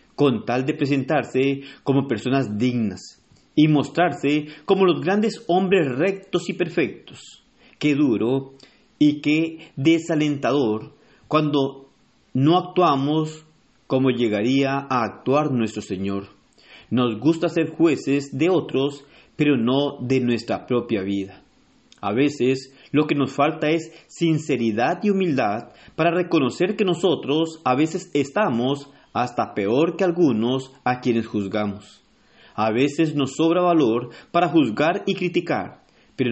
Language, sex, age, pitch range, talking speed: Spanish, male, 40-59, 125-160 Hz, 125 wpm